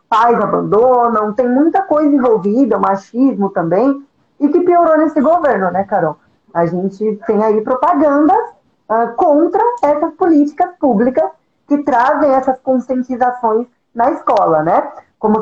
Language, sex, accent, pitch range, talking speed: Portuguese, female, Brazilian, 200-275 Hz, 125 wpm